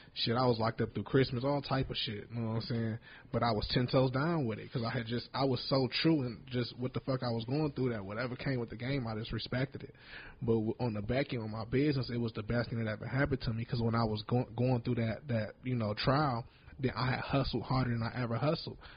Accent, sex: American, male